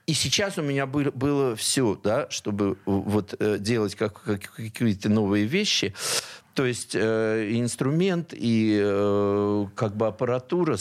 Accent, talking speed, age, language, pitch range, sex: native, 120 wpm, 50-69, Russian, 105-130 Hz, male